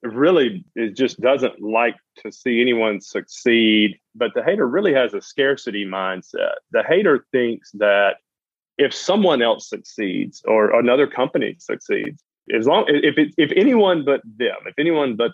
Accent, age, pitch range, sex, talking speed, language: American, 30-49, 105-130 Hz, male, 155 wpm, English